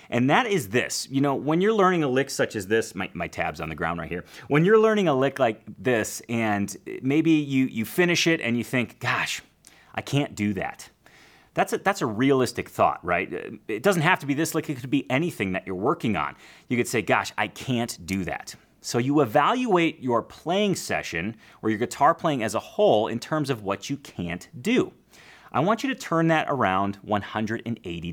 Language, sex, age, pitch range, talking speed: English, male, 30-49, 115-180 Hz, 215 wpm